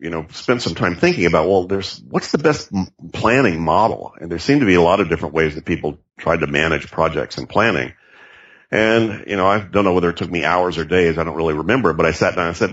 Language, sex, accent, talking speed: English, male, American, 260 wpm